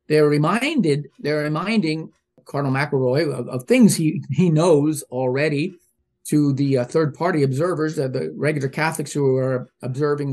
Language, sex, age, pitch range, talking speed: English, male, 50-69, 135-170 Hz, 150 wpm